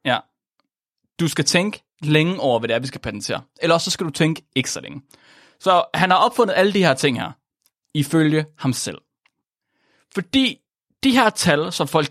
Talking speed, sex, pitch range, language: 190 wpm, male, 140-220 Hz, Danish